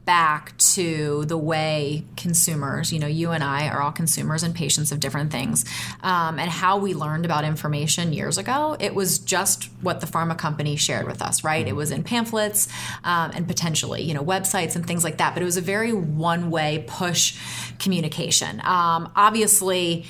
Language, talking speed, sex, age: English, 185 wpm, female, 30-49